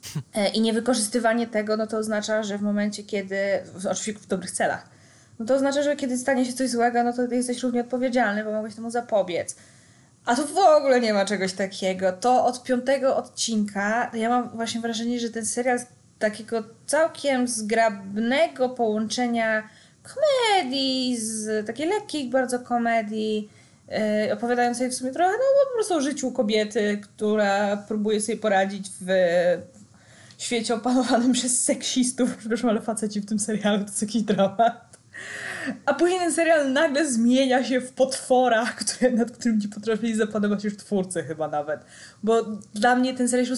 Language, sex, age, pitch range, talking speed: Polish, female, 20-39, 215-255 Hz, 165 wpm